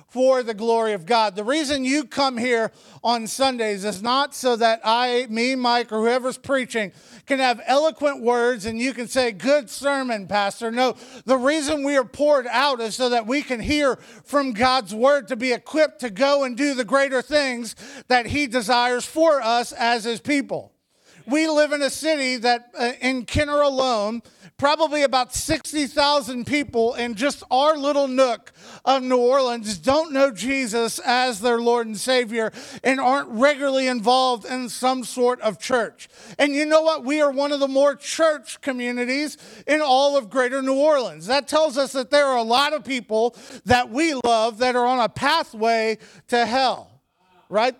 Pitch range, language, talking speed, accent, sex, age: 235-280 Hz, English, 180 wpm, American, male, 50-69